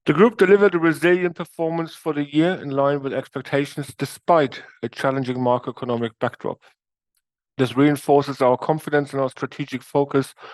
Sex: male